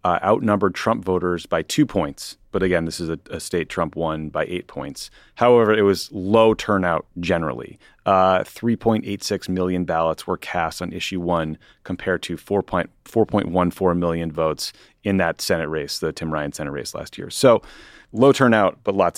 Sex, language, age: male, English, 30-49